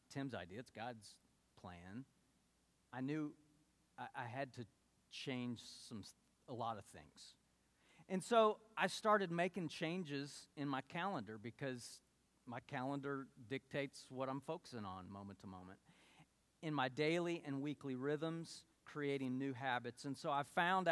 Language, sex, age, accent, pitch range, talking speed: English, male, 40-59, American, 115-140 Hz, 145 wpm